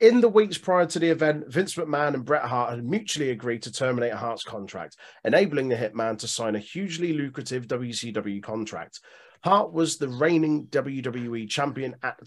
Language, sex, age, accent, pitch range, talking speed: English, male, 30-49, British, 115-150 Hz, 180 wpm